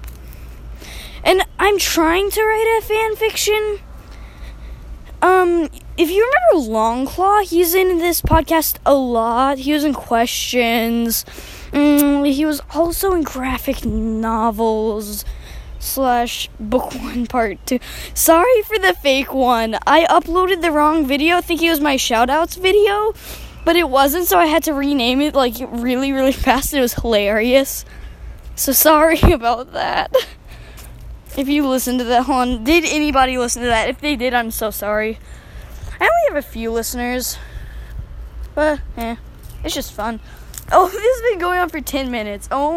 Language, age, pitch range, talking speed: English, 10-29, 235-335 Hz, 155 wpm